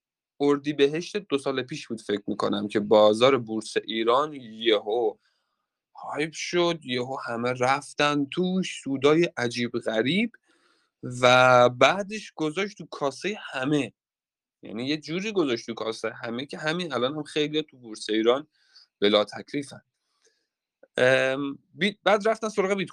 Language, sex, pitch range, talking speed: Persian, male, 120-175 Hz, 125 wpm